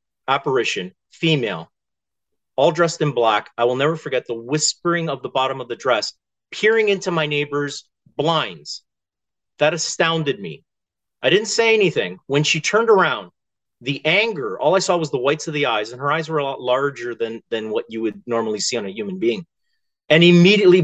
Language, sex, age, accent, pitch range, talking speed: English, male, 40-59, American, 140-185 Hz, 185 wpm